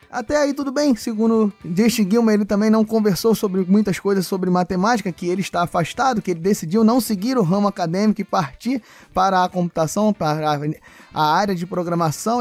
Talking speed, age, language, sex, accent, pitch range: 185 wpm, 20-39, Portuguese, male, Brazilian, 190-235 Hz